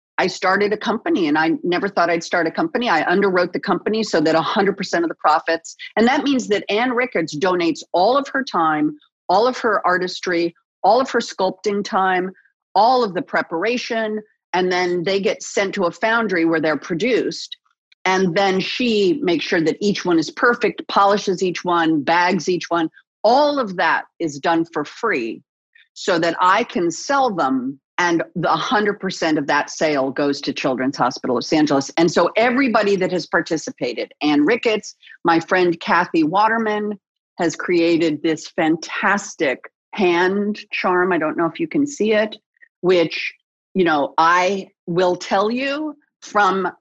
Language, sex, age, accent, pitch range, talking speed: English, female, 40-59, American, 170-240 Hz, 170 wpm